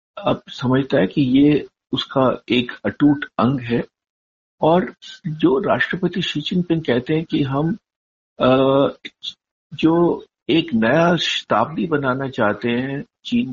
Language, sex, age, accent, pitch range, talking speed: Hindi, male, 60-79, native, 120-165 Hz, 120 wpm